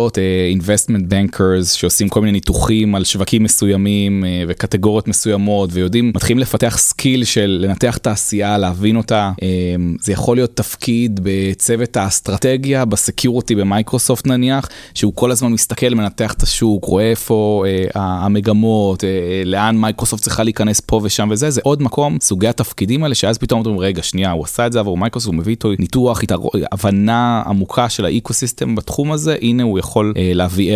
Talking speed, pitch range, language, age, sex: 130 wpm, 95-120 Hz, Hebrew, 20-39, male